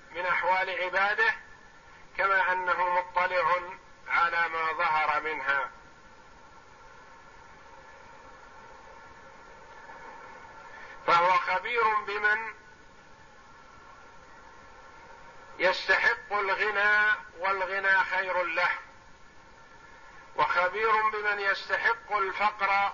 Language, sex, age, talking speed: Arabic, male, 50-69, 60 wpm